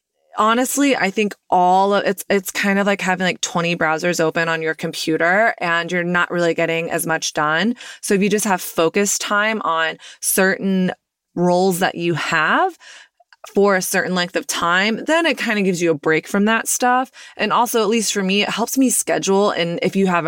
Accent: American